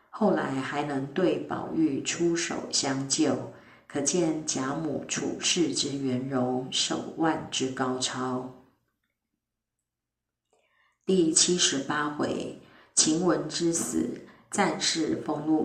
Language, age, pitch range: Chinese, 50-69, 130-165 Hz